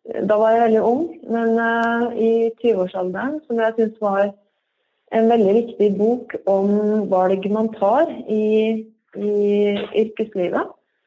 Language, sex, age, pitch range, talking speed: English, female, 30-49, 195-230 Hz, 125 wpm